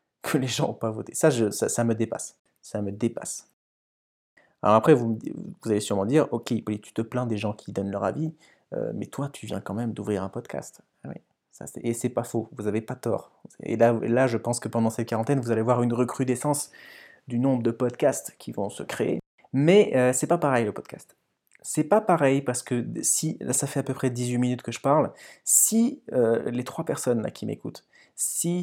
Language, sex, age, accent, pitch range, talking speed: French, male, 20-39, French, 110-130 Hz, 220 wpm